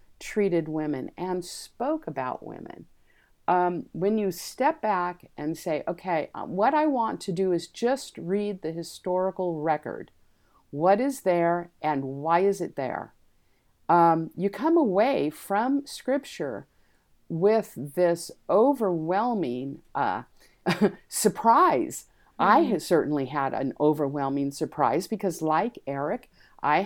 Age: 50-69